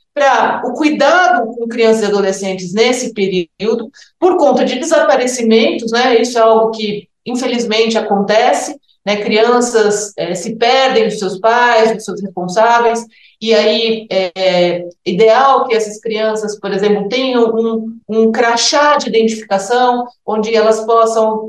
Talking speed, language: 140 wpm, Portuguese